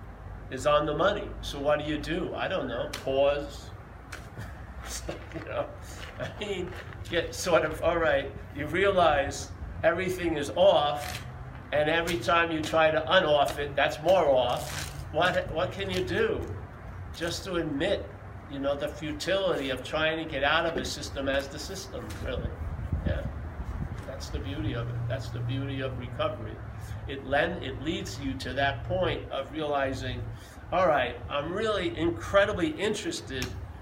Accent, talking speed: American, 155 wpm